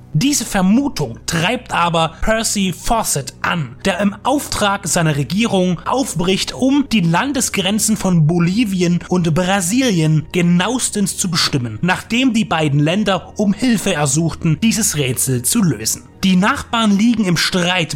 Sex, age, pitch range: male, 30-49, 155-215 Hz